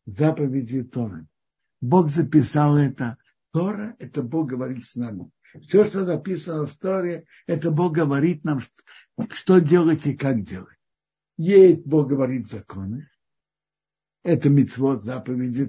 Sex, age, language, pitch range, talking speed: male, 60-79, Russian, 120-170 Hz, 135 wpm